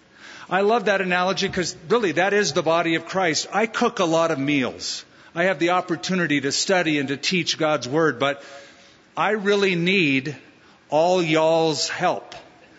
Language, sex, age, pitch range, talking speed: English, male, 50-69, 145-185 Hz, 170 wpm